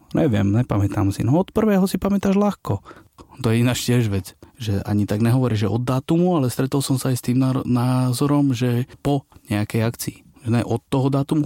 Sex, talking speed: male, 195 wpm